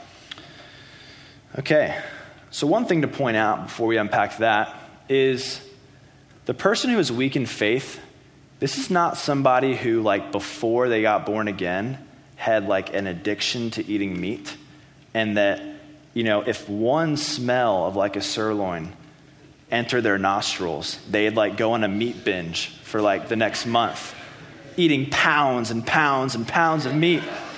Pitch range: 110-150 Hz